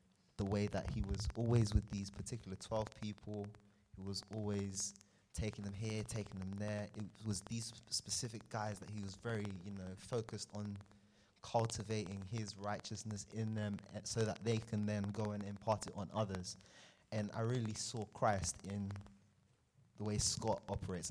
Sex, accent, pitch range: male, British, 95-110 Hz